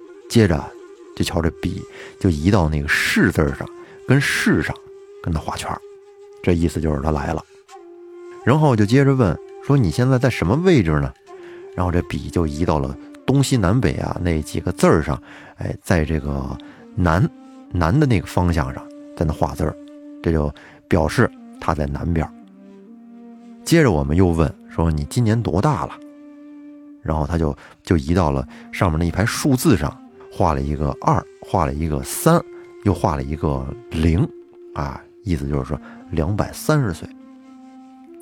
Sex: male